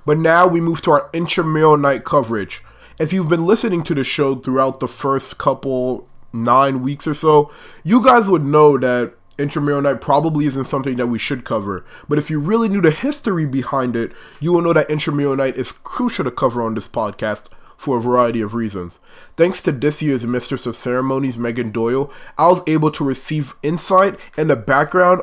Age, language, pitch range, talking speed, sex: 20-39, English, 130-160 Hz, 195 wpm, male